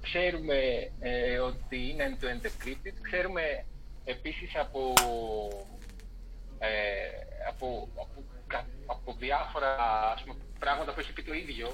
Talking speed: 100 wpm